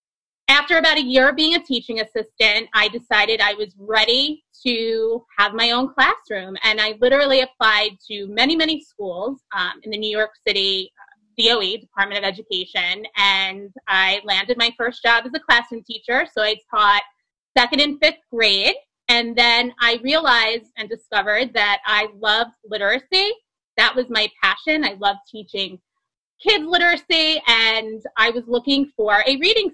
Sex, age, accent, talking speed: female, 20-39, American, 165 wpm